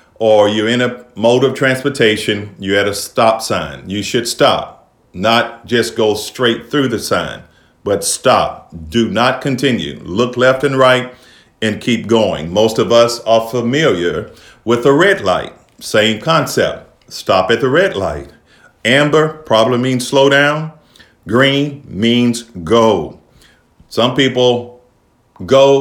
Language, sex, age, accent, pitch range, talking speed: English, male, 50-69, American, 110-140 Hz, 140 wpm